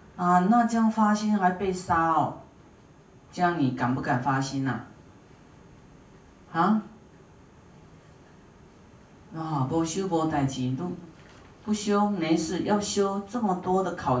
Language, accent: Chinese, native